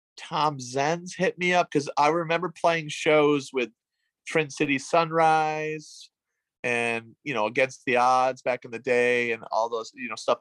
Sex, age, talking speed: male, 30-49, 175 wpm